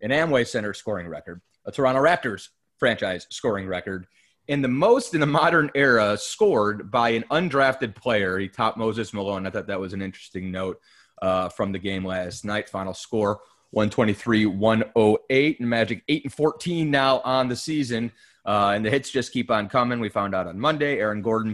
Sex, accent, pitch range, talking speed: male, American, 100-135 Hz, 180 wpm